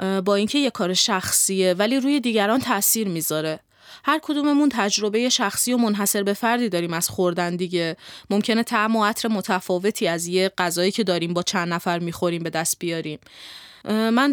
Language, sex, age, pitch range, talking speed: Persian, female, 20-39, 185-240 Hz, 170 wpm